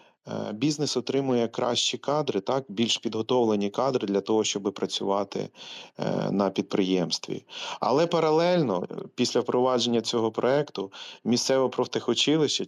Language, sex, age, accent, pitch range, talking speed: Ukrainian, male, 30-49, native, 110-145 Hz, 105 wpm